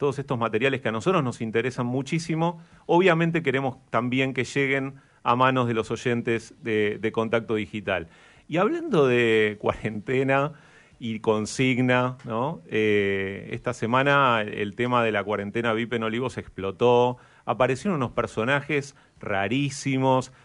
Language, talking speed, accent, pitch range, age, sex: Spanish, 130 wpm, Argentinian, 110-140 Hz, 40-59, male